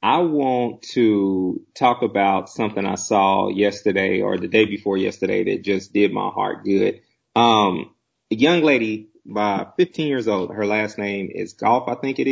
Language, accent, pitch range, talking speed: English, American, 105-125 Hz, 175 wpm